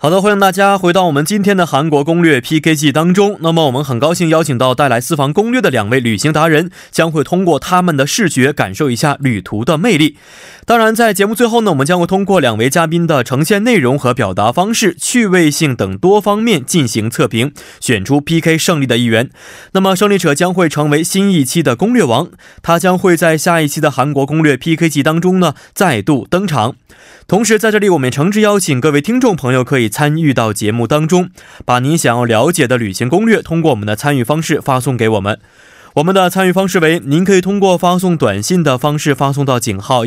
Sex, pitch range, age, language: male, 130-180 Hz, 20-39, Korean